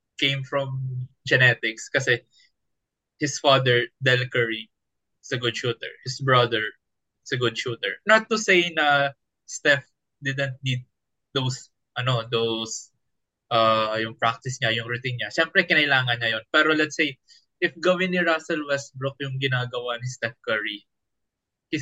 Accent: native